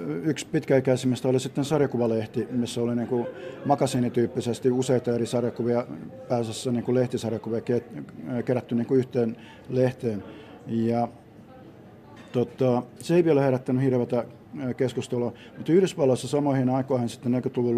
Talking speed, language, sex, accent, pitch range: 115 wpm, Finnish, male, native, 120-130 Hz